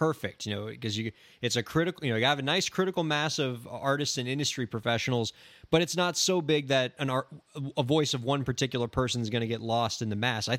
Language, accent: English, American